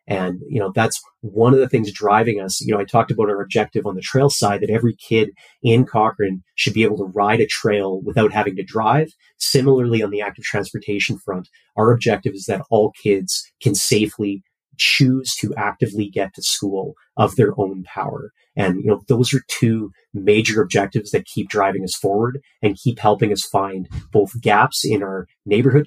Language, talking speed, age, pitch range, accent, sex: English, 195 wpm, 30-49, 100-130 Hz, American, male